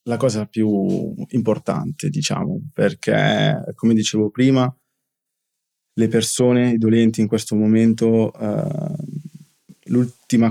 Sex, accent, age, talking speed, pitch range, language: male, native, 20-39, 105 wpm, 105-125 Hz, Italian